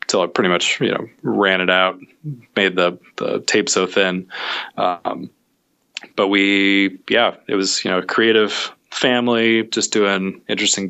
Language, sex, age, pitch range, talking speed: English, male, 20-39, 90-100 Hz, 160 wpm